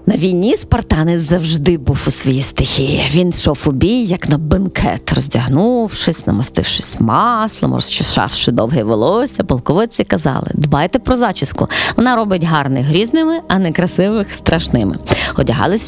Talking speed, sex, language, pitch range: 130 wpm, female, Ukrainian, 155-245 Hz